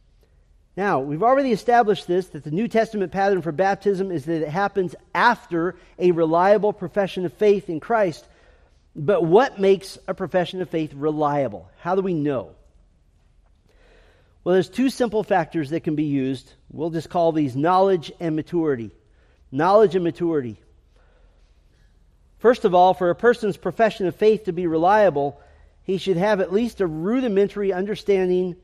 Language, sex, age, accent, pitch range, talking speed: English, male, 40-59, American, 155-200 Hz, 155 wpm